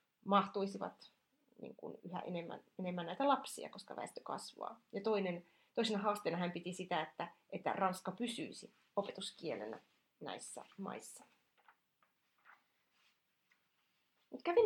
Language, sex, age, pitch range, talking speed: Finnish, female, 30-49, 190-230 Hz, 95 wpm